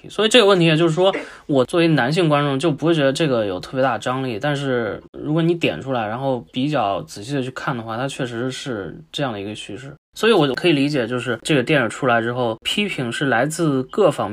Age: 20-39